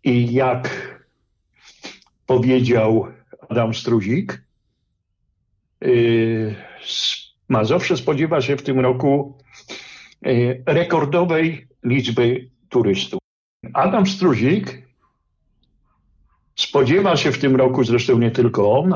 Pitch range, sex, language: 110-135 Hz, male, Polish